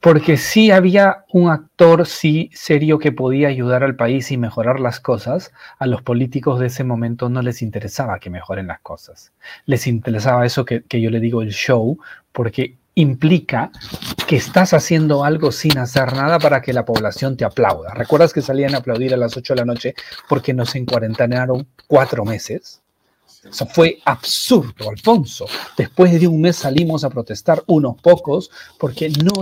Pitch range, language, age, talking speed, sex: 125-170 Hz, Spanish, 40-59, 175 wpm, male